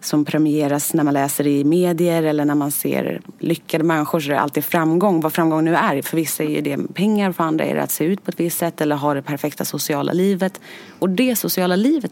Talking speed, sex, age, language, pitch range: 230 wpm, female, 30-49, Swedish, 150-200 Hz